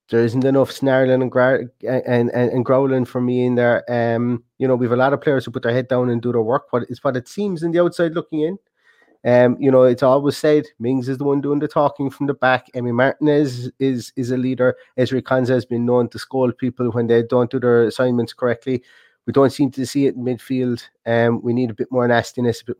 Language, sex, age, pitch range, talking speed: English, male, 30-49, 120-135 Hz, 245 wpm